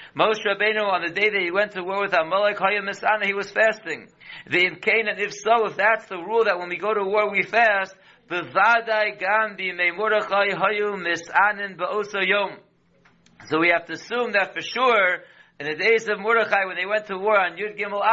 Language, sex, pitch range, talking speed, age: English, male, 185-215 Hz, 170 wpm, 60-79